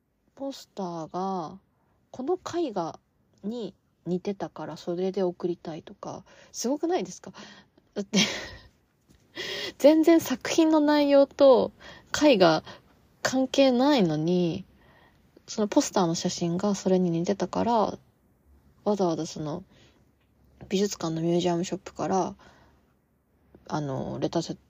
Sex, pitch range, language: female, 155-205 Hz, Japanese